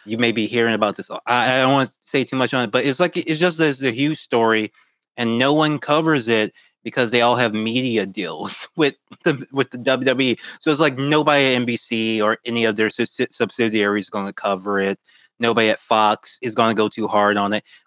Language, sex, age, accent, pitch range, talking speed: English, male, 20-39, American, 110-135 Hz, 230 wpm